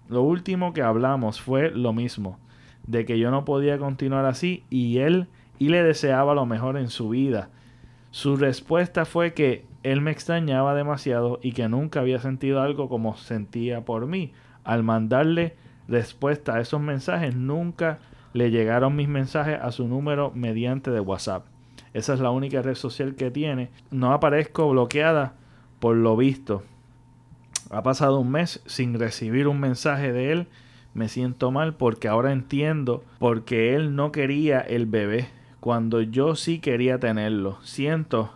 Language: Spanish